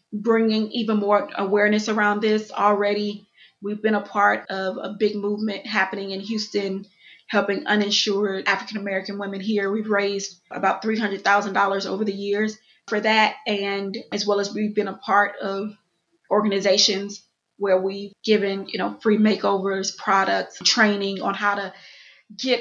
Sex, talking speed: female, 145 wpm